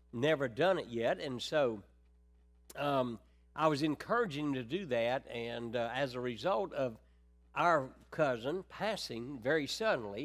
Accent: American